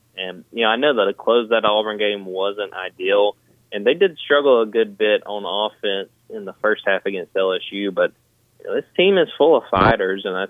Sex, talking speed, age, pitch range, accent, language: male, 225 wpm, 20-39, 95-125 Hz, American, English